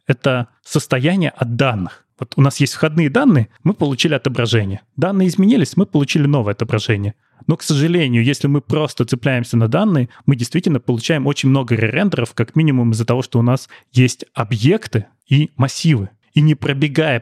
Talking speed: 165 wpm